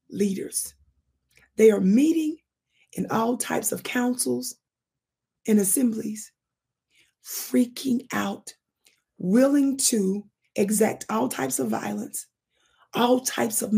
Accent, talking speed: American, 100 wpm